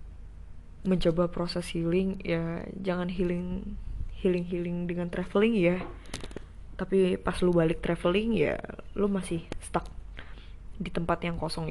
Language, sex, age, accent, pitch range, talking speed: Indonesian, female, 20-39, native, 165-185 Hz, 125 wpm